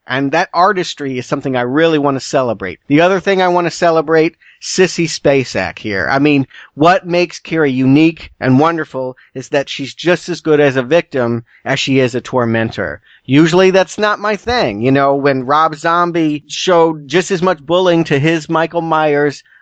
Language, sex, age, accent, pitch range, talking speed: English, male, 40-59, American, 130-170 Hz, 185 wpm